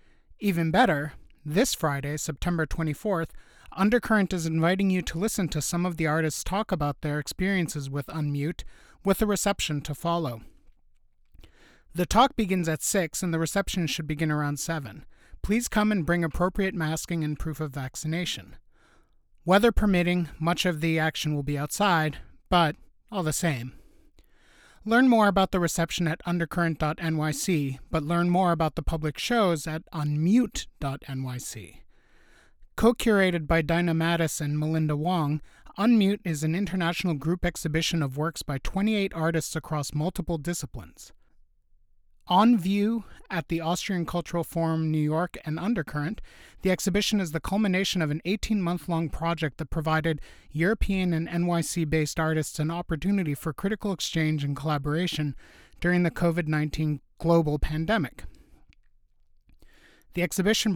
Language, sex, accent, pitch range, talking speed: English, male, American, 150-185 Hz, 140 wpm